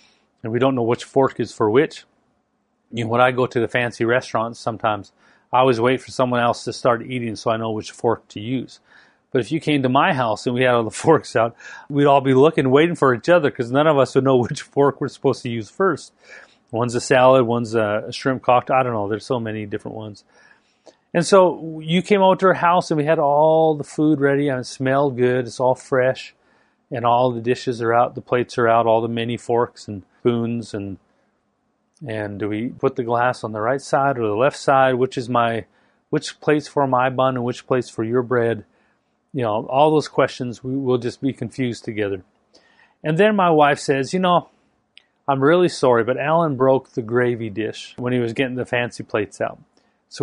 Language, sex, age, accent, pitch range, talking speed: English, male, 40-59, American, 120-150 Hz, 220 wpm